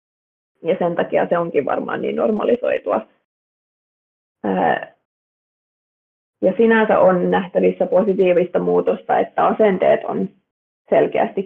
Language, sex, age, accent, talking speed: Finnish, female, 30-49, native, 95 wpm